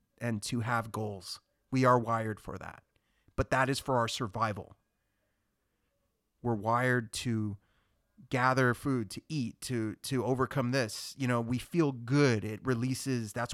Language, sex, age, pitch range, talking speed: English, male, 30-49, 105-125 Hz, 150 wpm